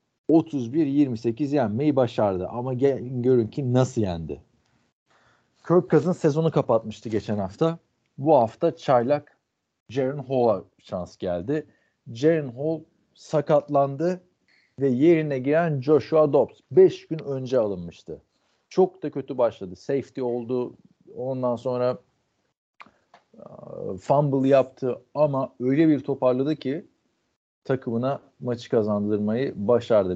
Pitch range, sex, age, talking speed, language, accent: 110-145 Hz, male, 40-59, 105 wpm, Turkish, native